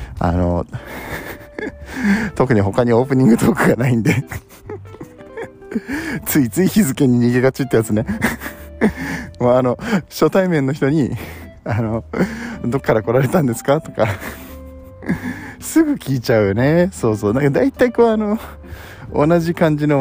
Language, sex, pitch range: Japanese, male, 105-155 Hz